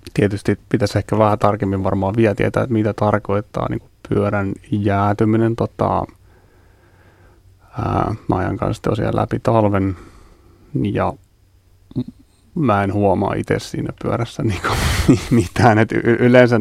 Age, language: 30-49, Finnish